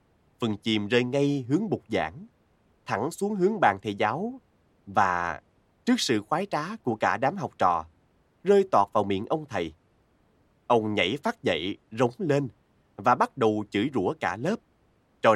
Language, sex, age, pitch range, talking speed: Vietnamese, male, 20-39, 105-145 Hz, 170 wpm